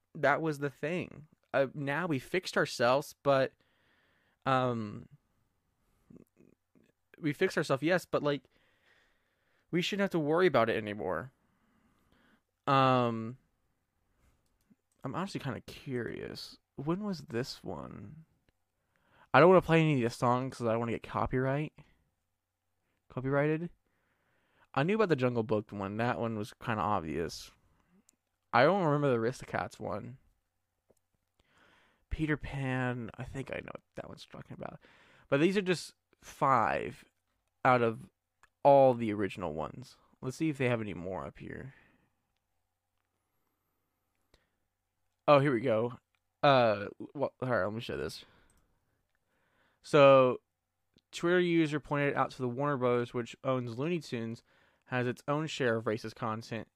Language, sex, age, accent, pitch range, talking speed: English, male, 20-39, American, 105-145 Hz, 140 wpm